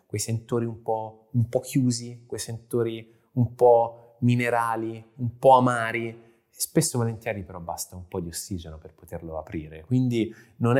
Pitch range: 100-130 Hz